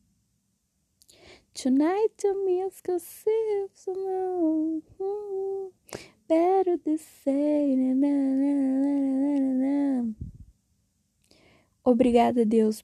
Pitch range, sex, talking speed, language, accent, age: 240-280 Hz, female, 80 wpm, Portuguese, Brazilian, 10-29